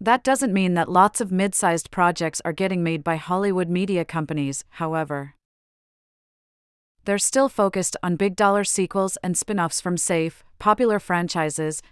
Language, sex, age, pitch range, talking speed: English, female, 40-59, 165-200 Hz, 140 wpm